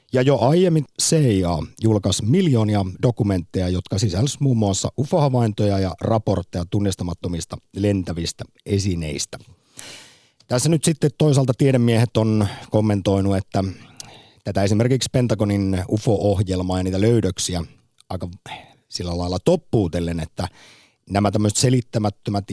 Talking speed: 105 wpm